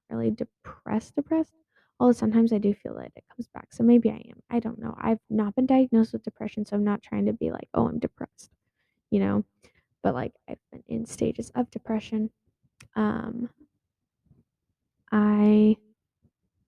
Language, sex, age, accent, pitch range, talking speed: English, female, 10-29, American, 210-245 Hz, 170 wpm